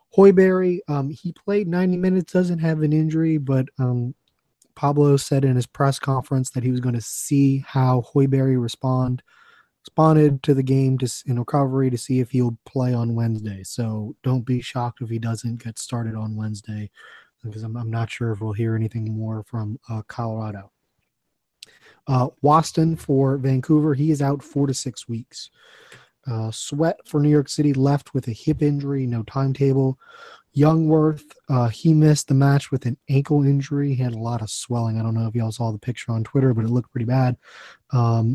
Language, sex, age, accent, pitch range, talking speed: English, male, 20-39, American, 115-145 Hz, 190 wpm